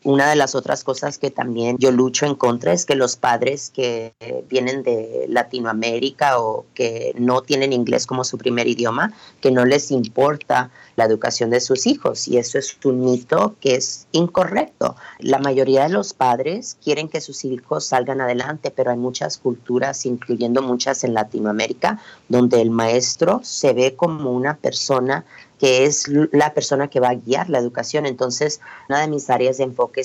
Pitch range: 120-140 Hz